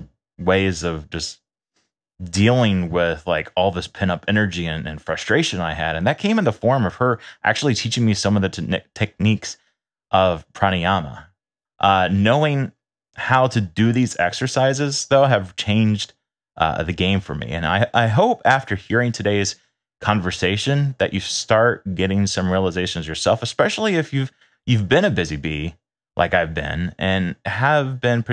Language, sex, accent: English, male, American